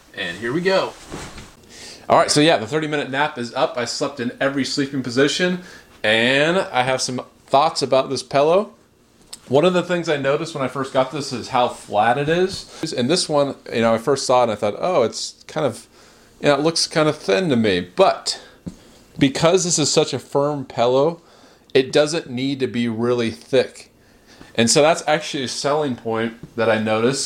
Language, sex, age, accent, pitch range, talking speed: English, male, 30-49, American, 120-155 Hz, 205 wpm